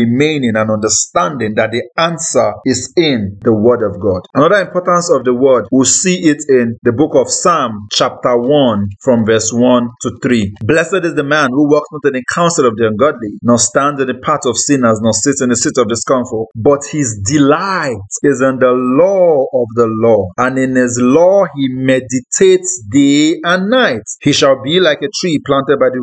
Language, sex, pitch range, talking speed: English, male, 115-155 Hz, 200 wpm